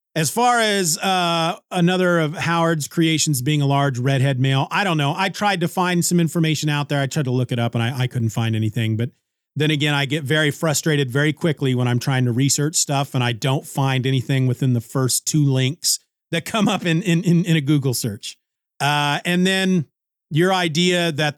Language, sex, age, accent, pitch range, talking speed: English, male, 40-59, American, 140-180 Hz, 215 wpm